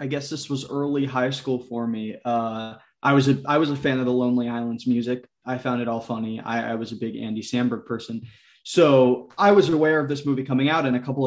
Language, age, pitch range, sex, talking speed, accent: English, 20-39, 125-145 Hz, male, 250 wpm, American